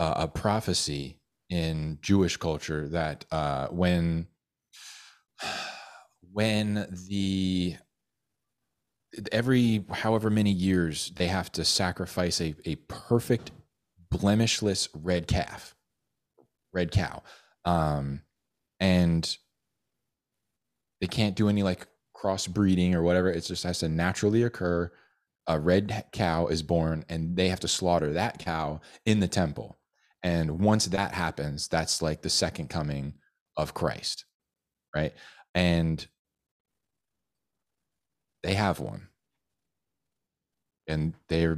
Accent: American